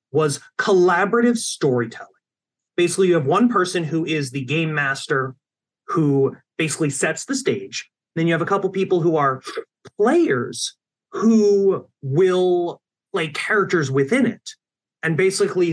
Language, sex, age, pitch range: English, male, 30-49, 140-230 Hz